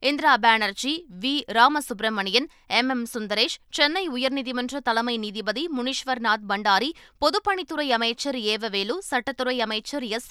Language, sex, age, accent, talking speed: Tamil, female, 20-39, native, 110 wpm